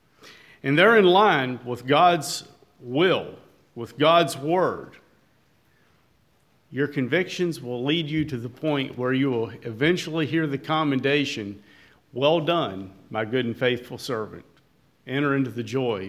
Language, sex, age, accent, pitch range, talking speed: English, male, 50-69, American, 125-175 Hz, 135 wpm